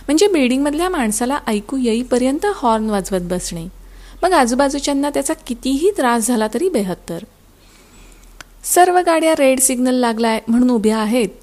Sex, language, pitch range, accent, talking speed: female, Marathi, 220-290 Hz, native, 125 wpm